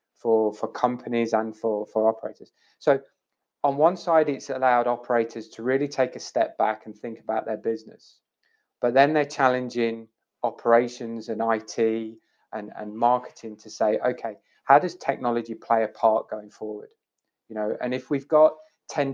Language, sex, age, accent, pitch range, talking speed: English, male, 20-39, British, 115-140 Hz, 165 wpm